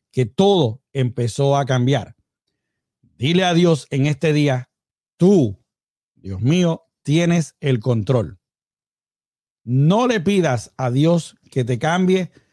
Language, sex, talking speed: Spanish, male, 120 wpm